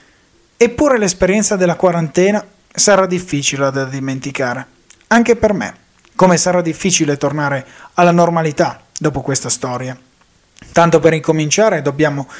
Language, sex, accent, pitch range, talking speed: Italian, male, native, 145-185 Hz, 115 wpm